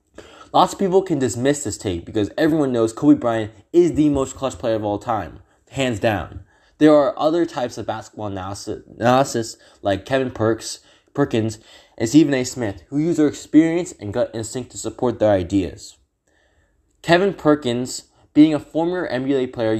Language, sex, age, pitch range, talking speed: English, male, 20-39, 110-150 Hz, 165 wpm